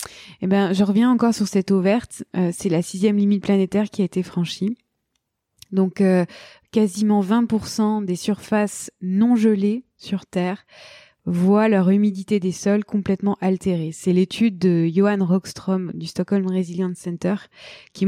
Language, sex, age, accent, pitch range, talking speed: French, female, 20-39, French, 185-215 Hz, 155 wpm